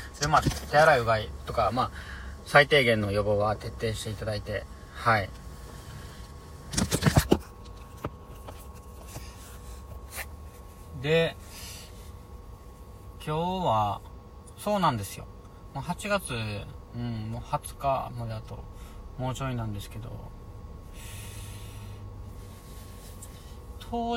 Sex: male